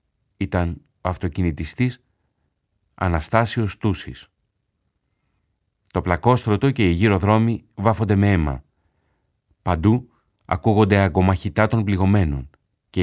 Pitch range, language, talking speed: 90-115 Hz, Greek, 90 wpm